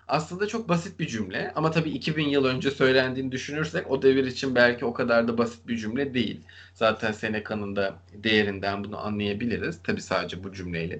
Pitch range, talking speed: 115-170 Hz, 180 wpm